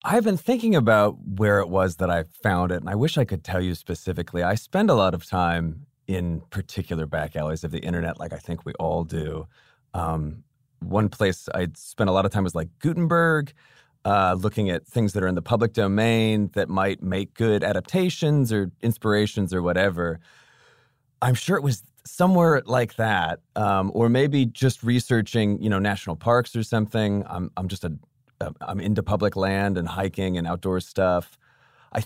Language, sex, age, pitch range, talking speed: English, male, 30-49, 95-130 Hz, 190 wpm